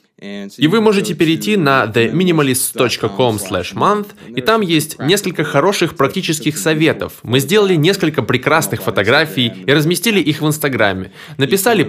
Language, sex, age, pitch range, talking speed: Russian, male, 20-39, 110-170 Hz, 125 wpm